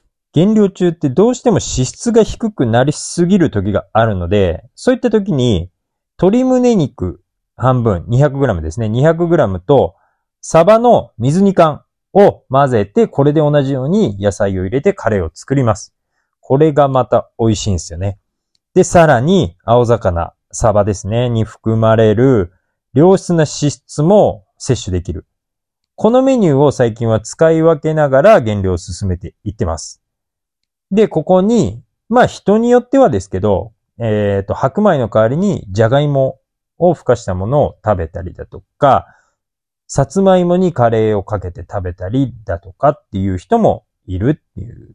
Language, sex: Japanese, male